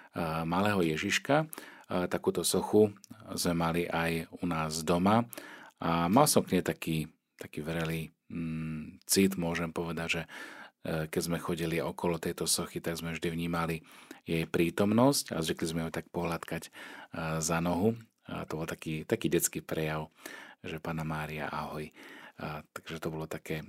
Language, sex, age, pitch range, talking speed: Slovak, male, 40-59, 80-90 Hz, 150 wpm